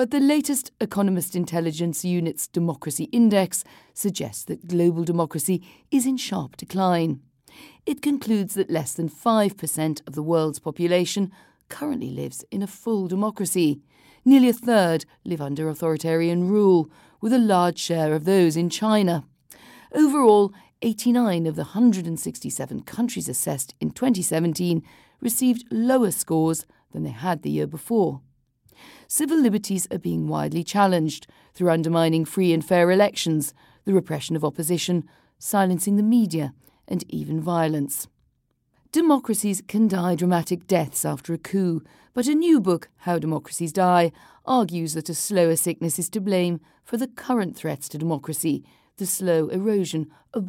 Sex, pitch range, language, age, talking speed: female, 160-210 Hz, English, 40-59, 145 wpm